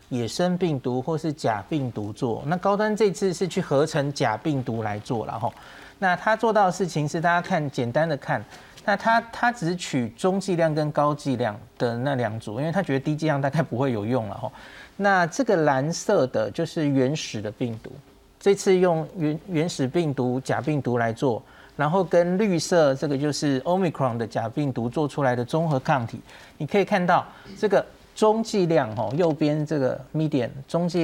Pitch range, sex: 135-180 Hz, male